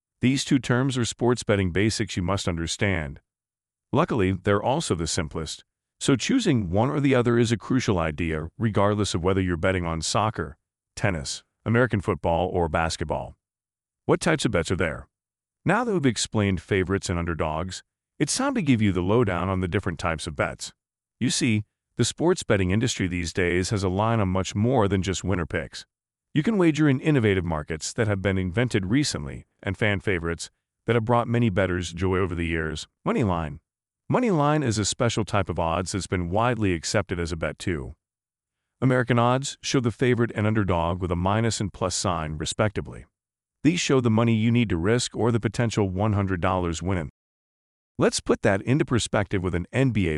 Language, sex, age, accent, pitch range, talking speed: English, male, 40-59, American, 90-120 Hz, 185 wpm